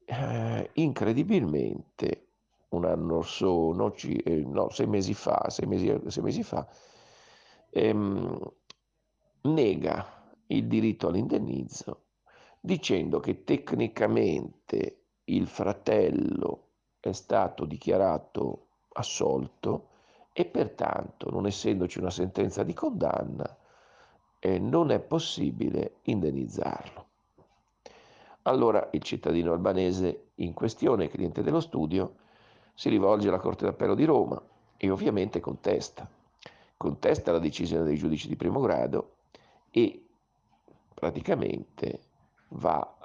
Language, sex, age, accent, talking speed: Italian, male, 50-69, native, 100 wpm